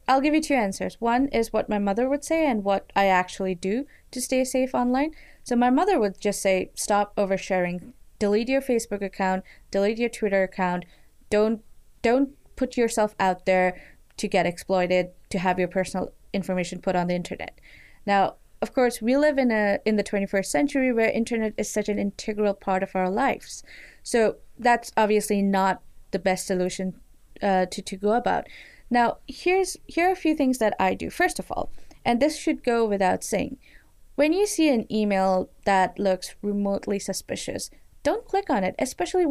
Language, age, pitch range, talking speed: English, 20-39, 190-250 Hz, 185 wpm